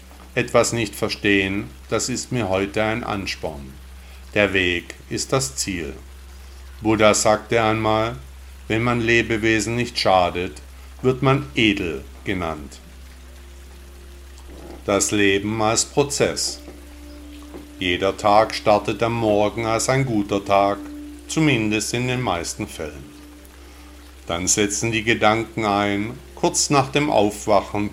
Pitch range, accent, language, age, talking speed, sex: 70-115 Hz, German, German, 50-69, 115 wpm, male